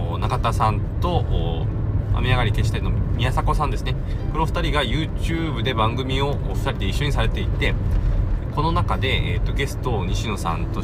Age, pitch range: 20-39, 95-110 Hz